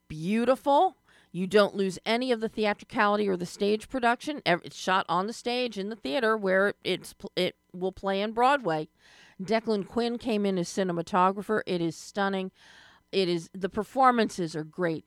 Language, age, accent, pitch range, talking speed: English, 40-59, American, 165-210 Hz, 165 wpm